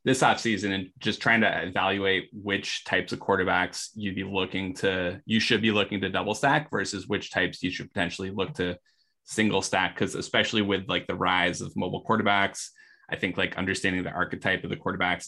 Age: 20-39